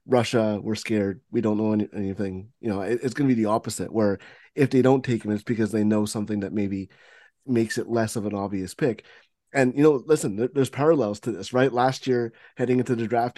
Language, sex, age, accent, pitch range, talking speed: English, male, 20-39, American, 105-130 Hz, 225 wpm